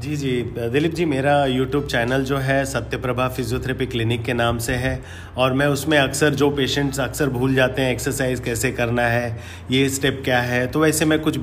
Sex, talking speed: male, 205 wpm